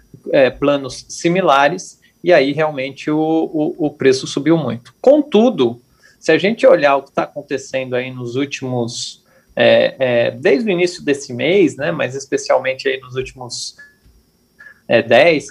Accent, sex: Brazilian, male